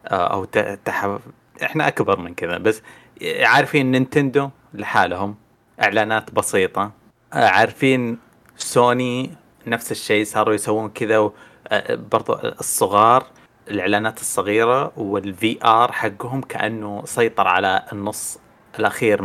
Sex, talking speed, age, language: male, 95 wpm, 30-49, Arabic